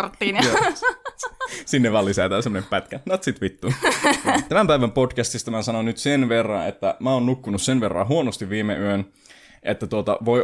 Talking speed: 160 wpm